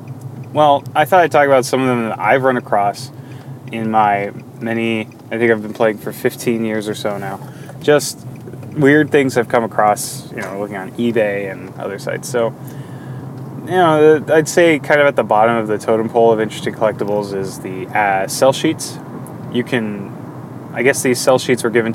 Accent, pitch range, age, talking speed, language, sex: American, 110-135 Hz, 20-39, 195 wpm, English, male